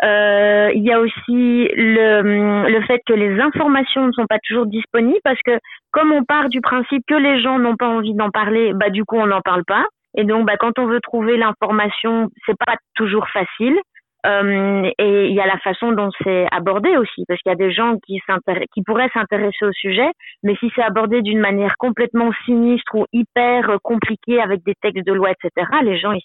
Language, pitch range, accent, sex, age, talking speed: French, 195-240 Hz, French, female, 30-49, 215 wpm